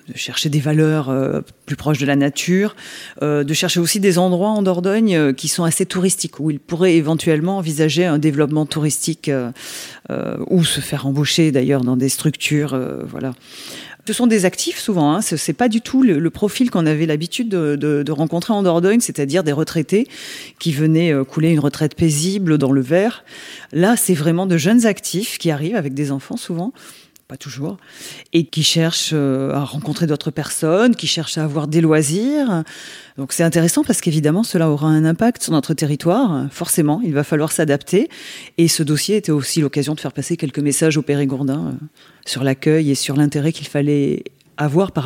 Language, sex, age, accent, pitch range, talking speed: French, female, 30-49, French, 145-180 Hz, 195 wpm